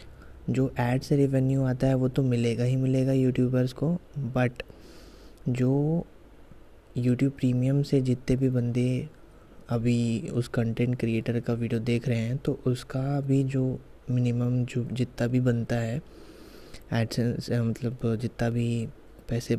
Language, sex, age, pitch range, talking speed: Hindi, male, 20-39, 115-130 Hz, 135 wpm